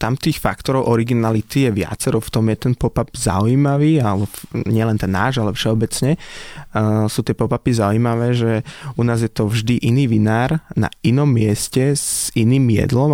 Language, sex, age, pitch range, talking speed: Slovak, male, 20-39, 110-125 Hz, 165 wpm